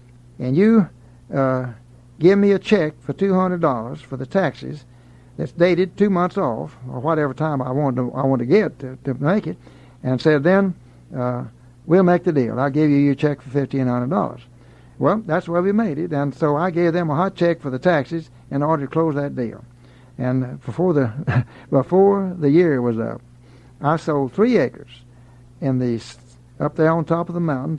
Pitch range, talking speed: 125-165 Hz, 195 wpm